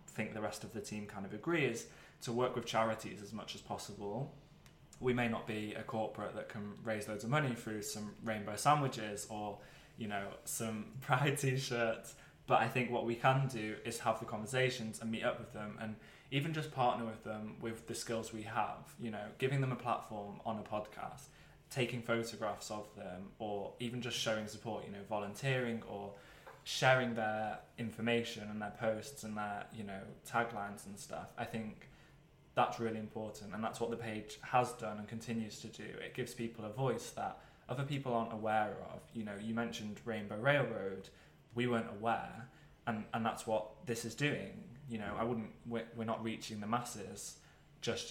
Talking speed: 195 wpm